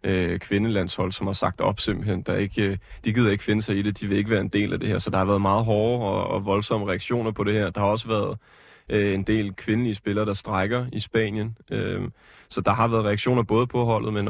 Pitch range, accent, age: 100-110 Hz, native, 20-39